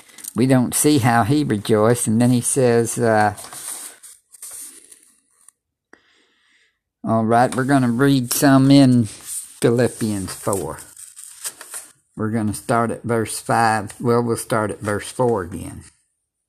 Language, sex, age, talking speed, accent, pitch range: English, male, 60-79, 125 wpm, American, 110-125 Hz